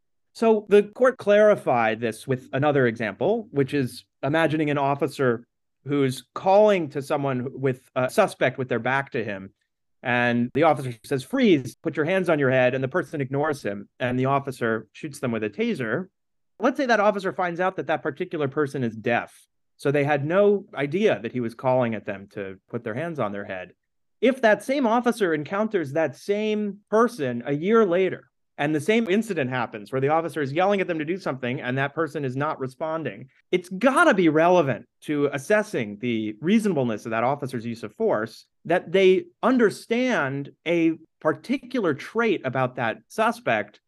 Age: 30-49